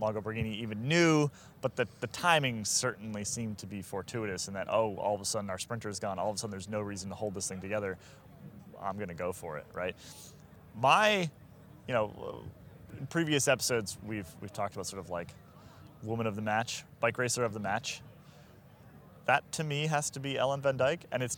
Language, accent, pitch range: English, American, 105-145 Hz